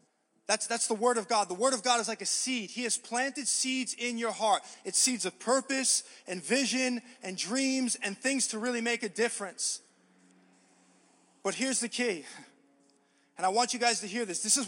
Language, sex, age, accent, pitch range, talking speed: English, male, 20-39, American, 215-260 Hz, 205 wpm